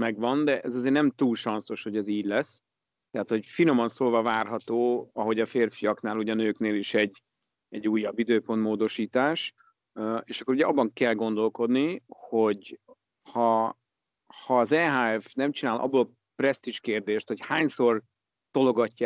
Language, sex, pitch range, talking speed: Hungarian, male, 110-125 Hz, 150 wpm